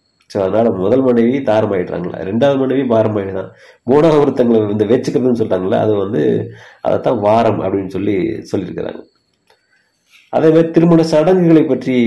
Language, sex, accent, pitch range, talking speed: Tamil, male, native, 100-130 Hz, 135 wpm